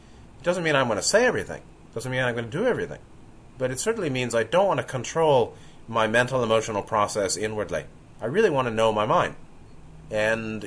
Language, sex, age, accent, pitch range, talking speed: English, male, 30-49, American, 105-135 Hz, 200 wpm